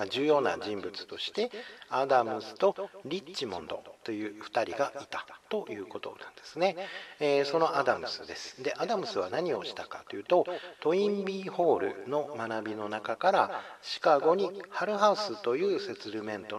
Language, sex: Japanese, male